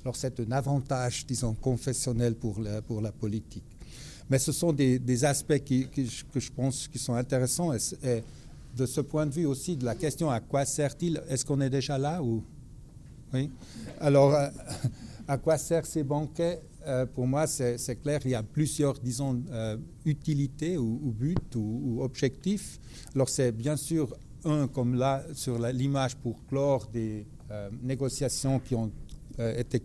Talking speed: 175 wpm